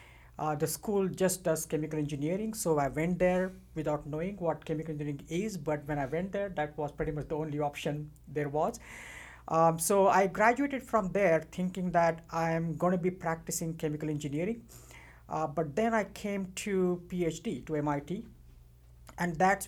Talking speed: 175 wpm